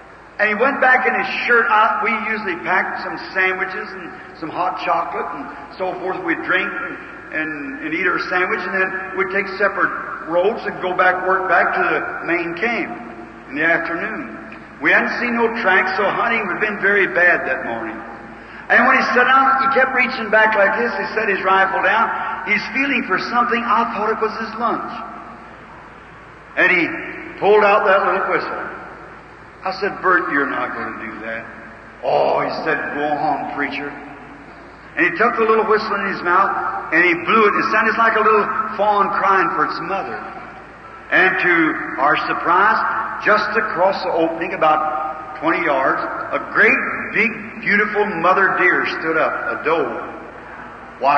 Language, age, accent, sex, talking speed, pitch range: English, 60-79, American, male, 180 wpm, 170-220 Hz